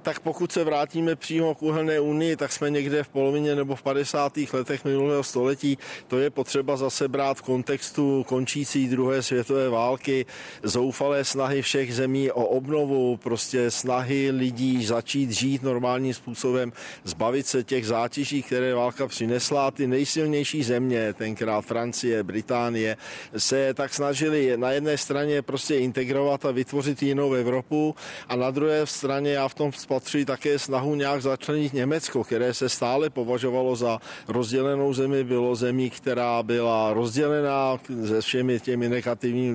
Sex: male